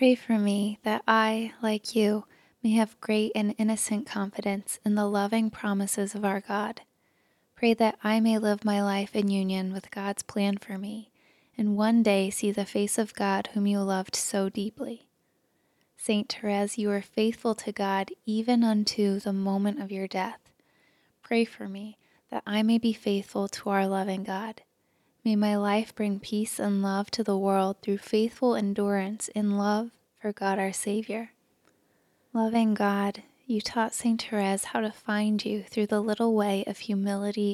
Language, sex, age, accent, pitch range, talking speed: English, female, 10-29, American, 200-220 Hz, 175 wpm